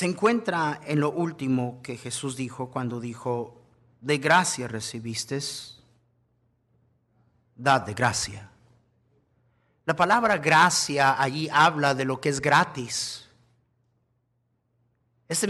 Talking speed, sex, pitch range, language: 105 wpm, male, 120-160 Hz, Spanish